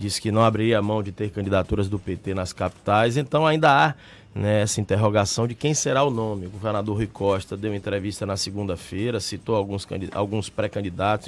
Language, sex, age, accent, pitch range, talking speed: Portuguese, male, 20-39, Brazilian, 105-135 Hz, 200 wpm